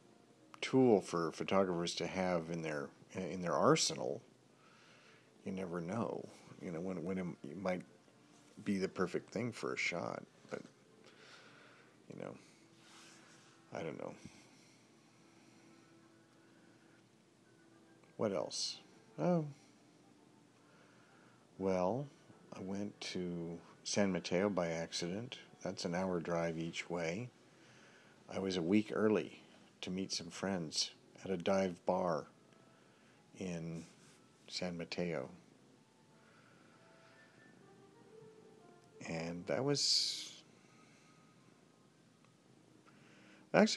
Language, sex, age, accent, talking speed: English, male, 50-69, American, 95 wpm